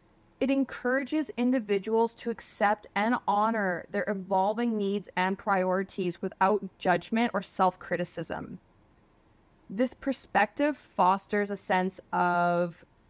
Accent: American